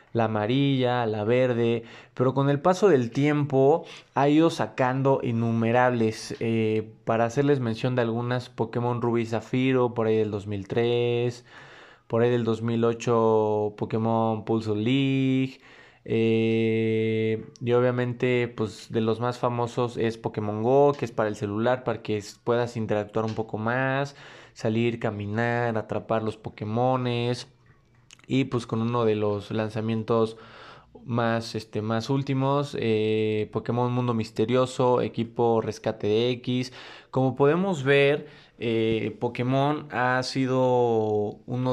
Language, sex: Spanish, male